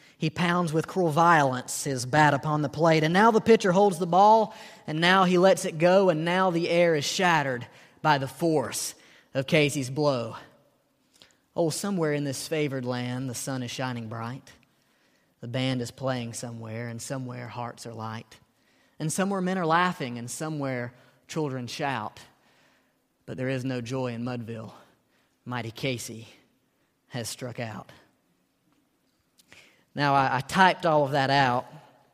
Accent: American